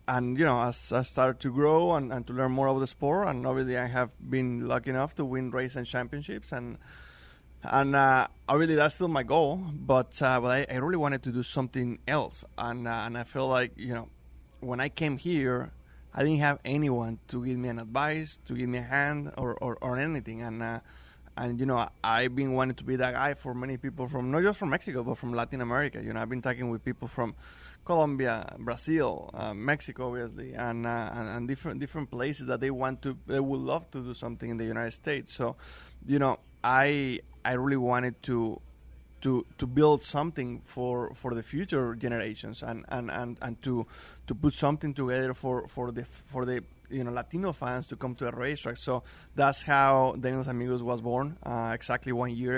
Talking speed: 210 wpm